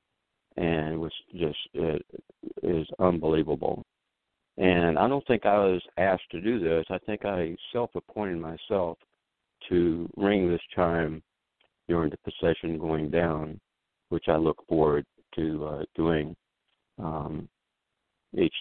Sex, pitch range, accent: male, 80-90 Hz, American